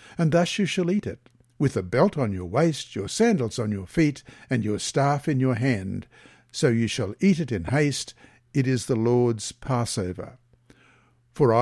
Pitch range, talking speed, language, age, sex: 115-155 Hz, 185 wpm, English, 60-79, male